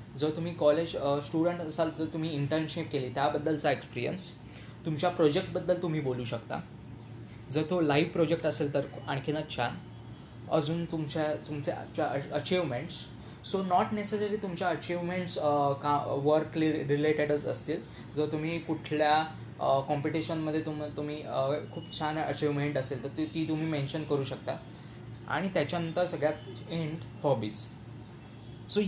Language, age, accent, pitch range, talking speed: Marathi, 20-39, native, 140-170 Hz, 125 wpm